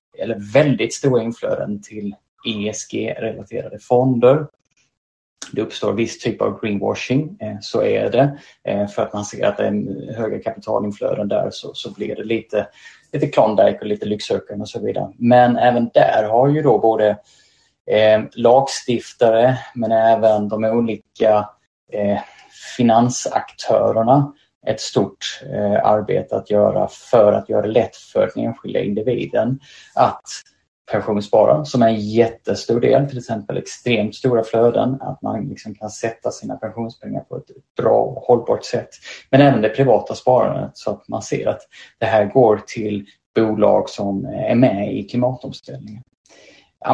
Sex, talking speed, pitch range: male, 145 wpm, 105-125 Hz